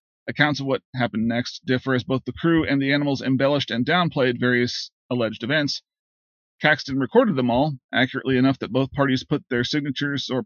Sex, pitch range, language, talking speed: male, 125-155 Hz, English, 185 wpm